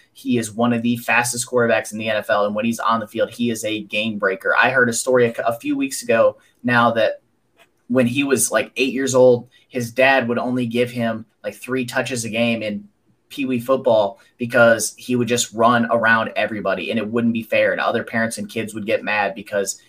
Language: English